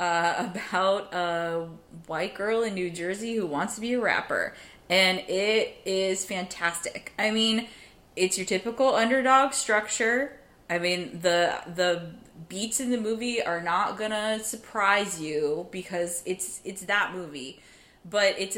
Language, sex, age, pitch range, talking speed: English, female, 20-39, 175-225 Hz, 150 wpm